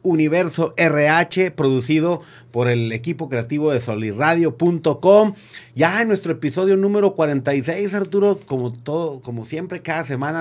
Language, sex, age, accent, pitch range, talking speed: Spanish, male, 40-59, Mexican, 135-180 Hz, 125 wpm